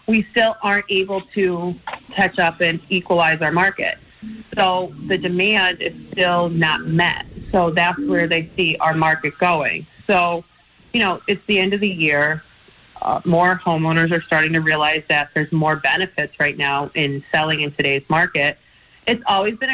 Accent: American